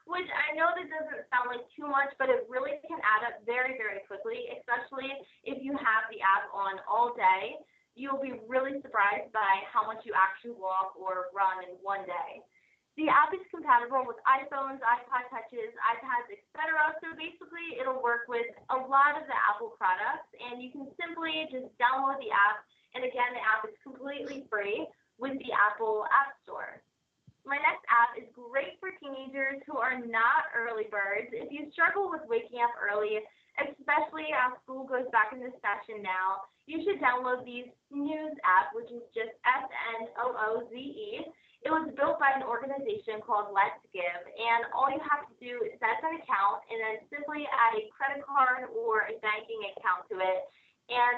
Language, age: English, 20-39